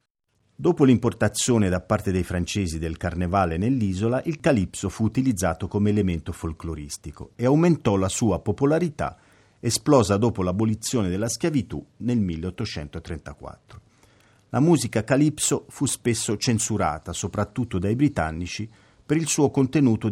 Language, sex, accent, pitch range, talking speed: Italian, male, native, 90-120 Hz, 120 wpm